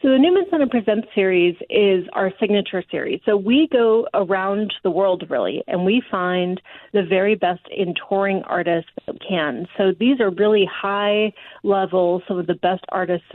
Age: 30-49